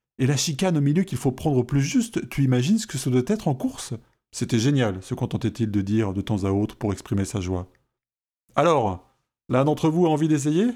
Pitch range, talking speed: 110-135 Hz, 255 wpm